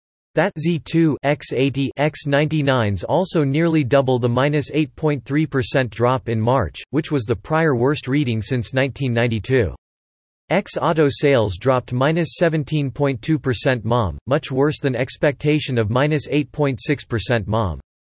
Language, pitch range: English, 120-150 Hz